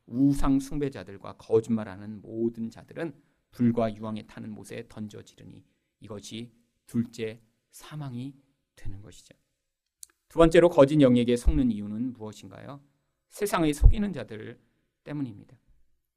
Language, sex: Korean, male